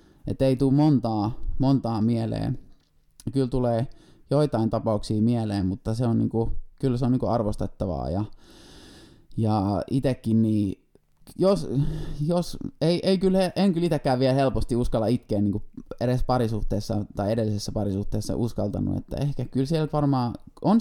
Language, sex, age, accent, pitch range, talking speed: Finnish, male, 20-39, native, 105-130 Hz, 145 wpm